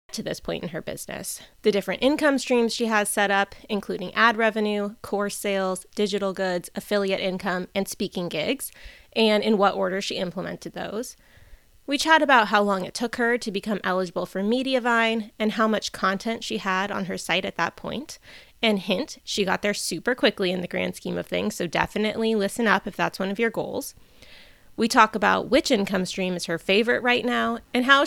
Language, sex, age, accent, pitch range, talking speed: English, female, 20-39, American, 190-235 Hz, 200 wpm